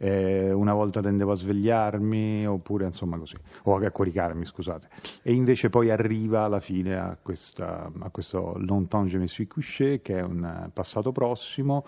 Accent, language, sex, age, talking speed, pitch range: native, Italian, male, 40-59, 155 wpm, 95-110 Hz